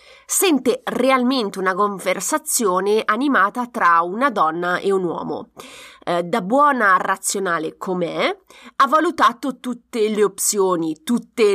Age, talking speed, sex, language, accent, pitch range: 30-49, 110 wpm, female, Italian, native, 185-260 Hz